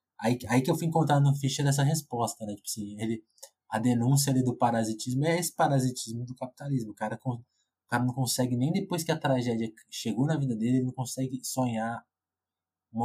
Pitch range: 110-135 Hz